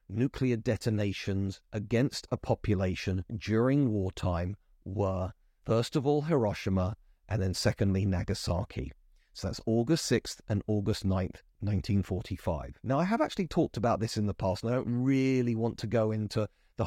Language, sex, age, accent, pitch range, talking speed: English, male, 40-59, British, 105-155 Hz, 155 wpm